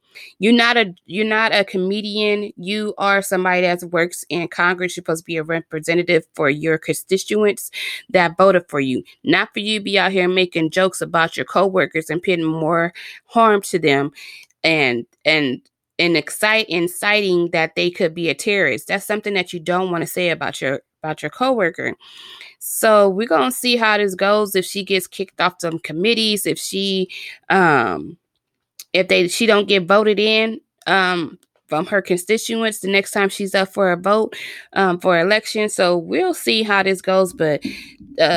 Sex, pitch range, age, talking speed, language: female, 170-220 Hz, 20-39, 185 wpm, English